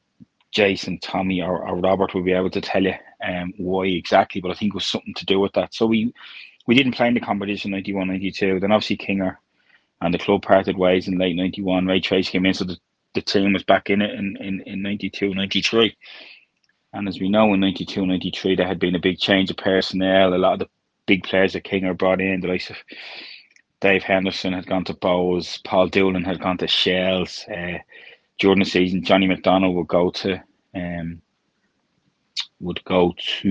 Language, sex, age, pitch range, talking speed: English, male, 20-39, 90-100 Hz, 200 wpm